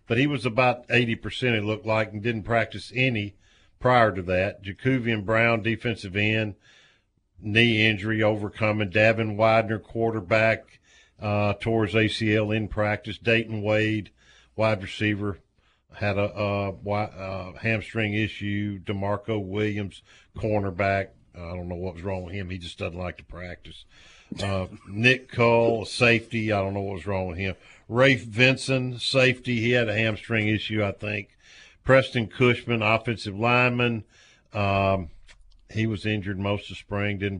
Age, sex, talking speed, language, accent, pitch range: 50-69, male, 150 wpm, English, American, 100-115 Hz